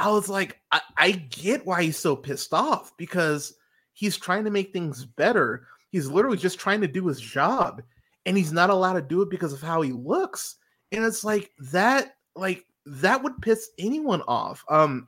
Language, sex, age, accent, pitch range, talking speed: English, male, 30-49, American, 125-180 Hz, 195 wpm